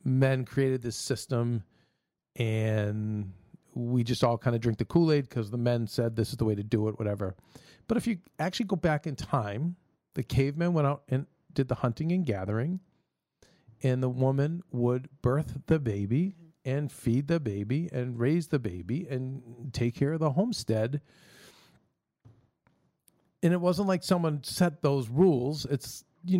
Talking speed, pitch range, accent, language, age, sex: 170 wpm, 120-160 Hz, American, English, 40-59, male